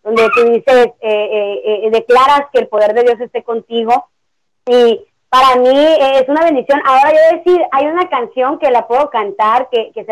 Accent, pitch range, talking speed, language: Mexican, 230-275 Hz, 195 wpm, Spanish